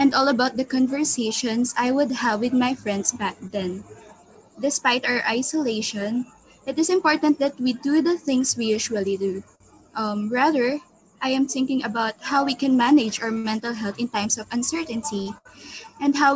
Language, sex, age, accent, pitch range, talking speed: Filipino, female, 20-39, native, 220-280 Hz, 170 wpm